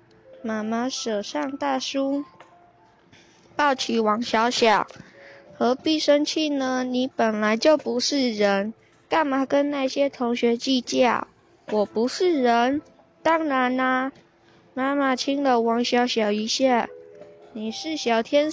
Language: Chinese